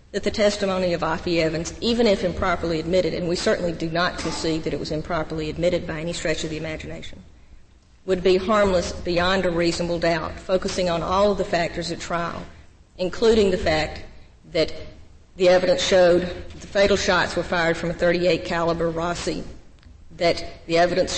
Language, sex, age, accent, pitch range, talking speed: English, female, 50-69, American, 165-185 Hz, 175 wpm